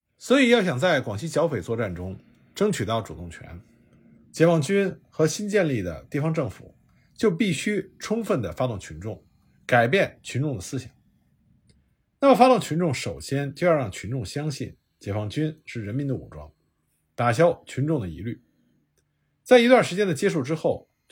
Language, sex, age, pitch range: Chinese, male, 50-69, 105-175 Hz